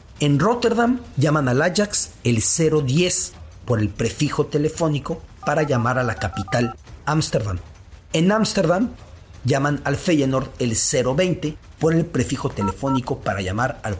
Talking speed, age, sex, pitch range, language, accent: 135 wpm, 40-59, male, 115-160 Hz, English, Mexican